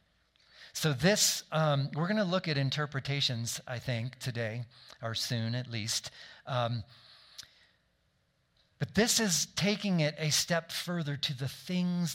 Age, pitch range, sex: 40-59, 130-160 Hz, male